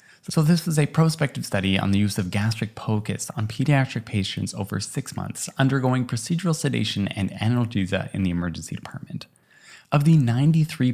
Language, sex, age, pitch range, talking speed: English, male, 20-39, 105-140 Hz, 165 wpm